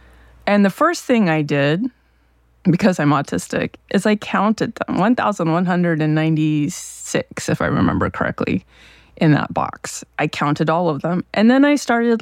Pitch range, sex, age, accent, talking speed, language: 110-175 Hz, female, 20-39, American, 175 wpm, English